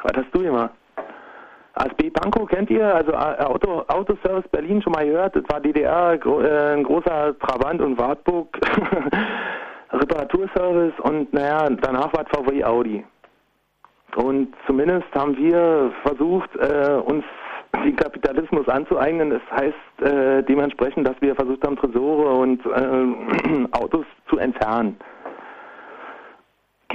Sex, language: male, German